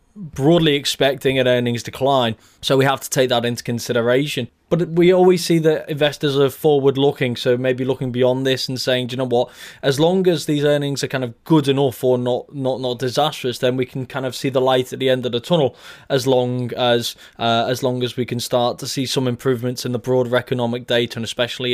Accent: British